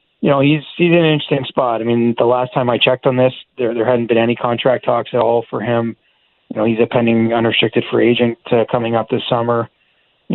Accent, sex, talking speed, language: American, male, 240 wpm, English